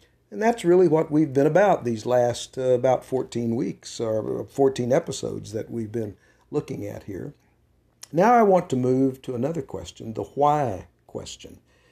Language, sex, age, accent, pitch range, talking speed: English, male, 50-69, American, 110-140 Hz, 165 wpm